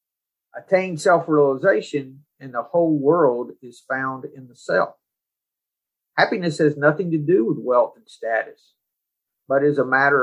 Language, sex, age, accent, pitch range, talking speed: English, male, 50-69, American, 130-170 Hz, 140 wpm